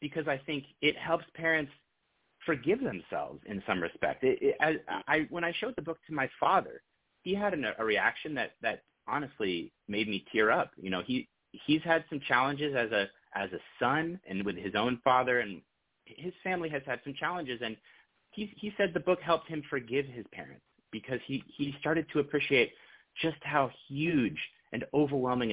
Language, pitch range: English, 120-160 Hz